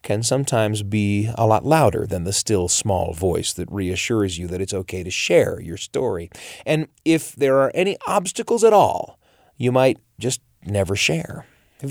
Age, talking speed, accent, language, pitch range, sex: 30-49, 175 wpm, American, English, 105-135 Hz, male